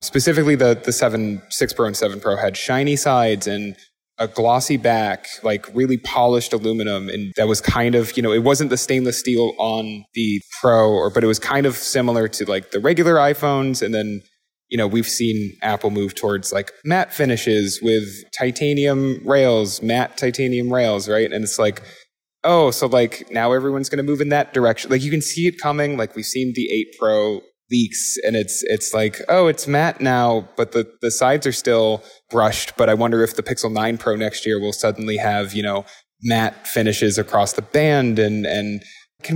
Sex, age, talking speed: male, 20-39, 200 wpm